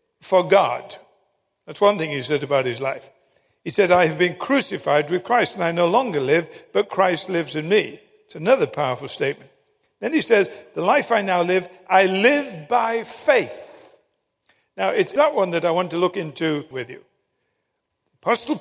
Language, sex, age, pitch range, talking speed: English, male, 50-69, 160-235 Hz, 185 wpm